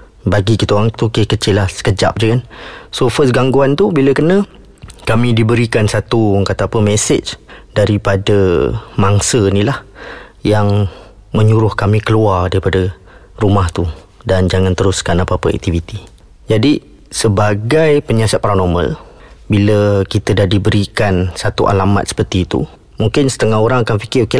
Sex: male